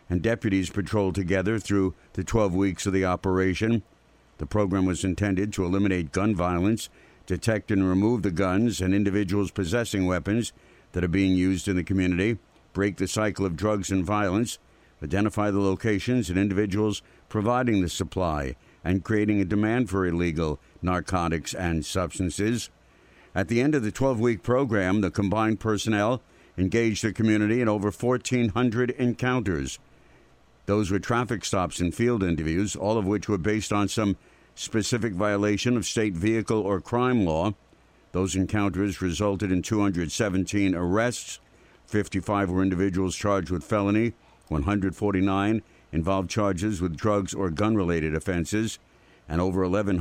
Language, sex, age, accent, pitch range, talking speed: English, male, 60-79, American, 90-105 Hz, 150 wpm